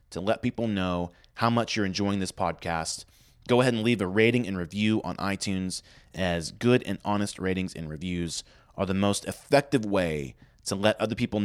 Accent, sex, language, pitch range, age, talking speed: American, male, English, 90-120 Hz, 30-49, 190 wpm